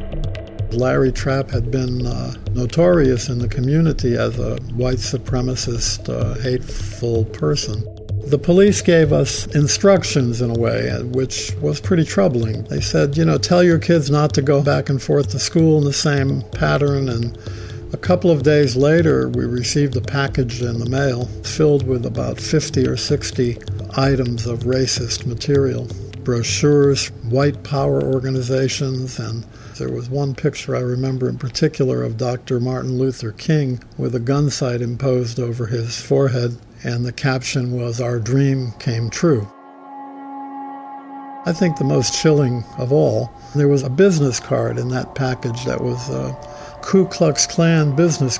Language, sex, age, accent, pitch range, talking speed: English, male, 60-79, American, 115-145 Hz, 155 wpm